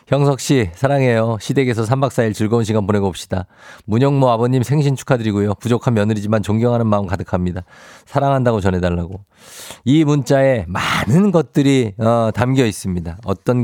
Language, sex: Korean, male